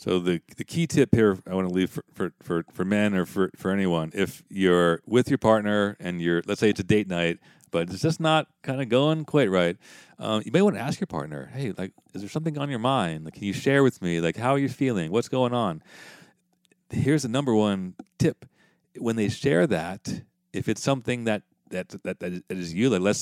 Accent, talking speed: American, 240 wpm